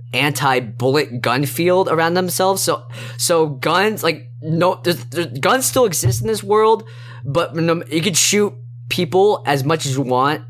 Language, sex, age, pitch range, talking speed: English, male, 20-39, 120-155 Hz, 165 wpm